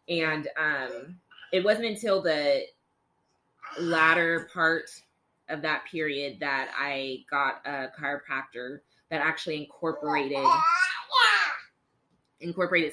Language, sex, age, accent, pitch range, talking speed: English, female, 20-39, American, 145-175 Hz, 95 wpm